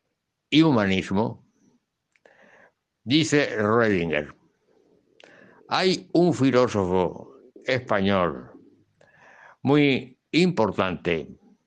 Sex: male